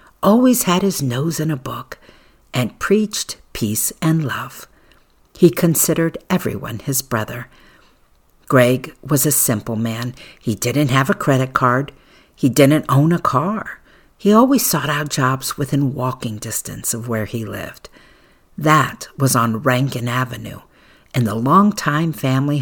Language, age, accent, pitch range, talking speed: English, 50-69, American, 120-150 Hz, 145 wpm